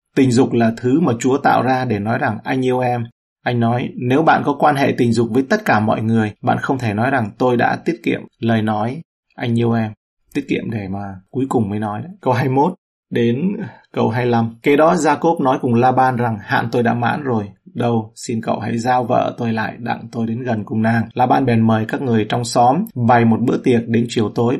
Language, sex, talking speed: Vietnamese, male, 235 wpm